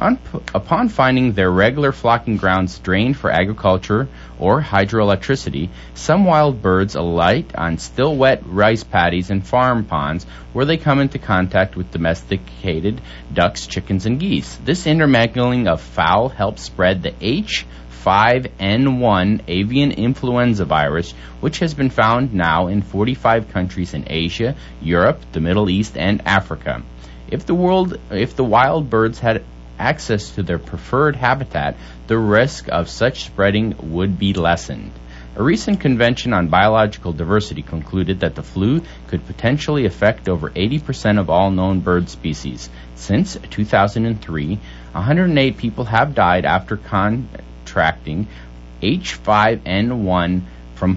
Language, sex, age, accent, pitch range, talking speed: English, male, 30-49, American, 85-120 Hz, 130 wpm